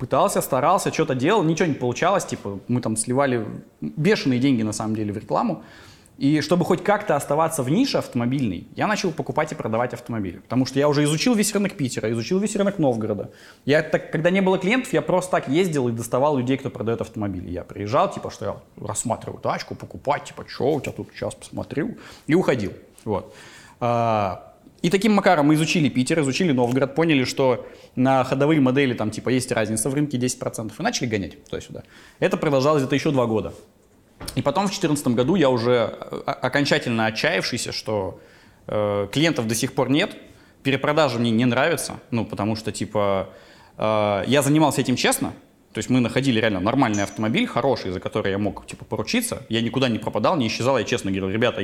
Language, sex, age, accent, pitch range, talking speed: Russian, male, 20-39, native, 110-150 Hz, 180 wpm